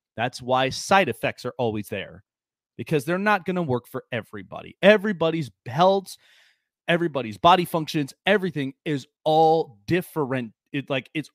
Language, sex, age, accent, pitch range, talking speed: English, male, 30-49, American, 120-170 Hz, 145 wpm